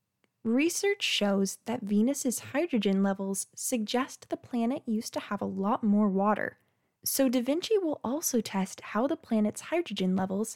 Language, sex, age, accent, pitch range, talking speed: English, female, 20-39, American, 195-275 Hz, 155 wpm